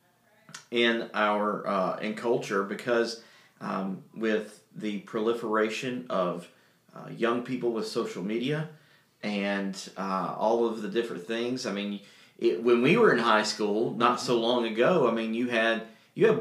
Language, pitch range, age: English, 110-125 Hz, 40-59